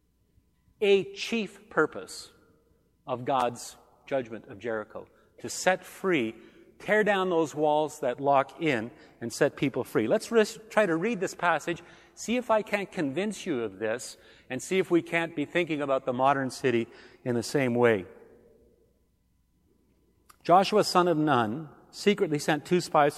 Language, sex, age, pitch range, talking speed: English, male, 40-59, 135-190 Hz, 155 wpm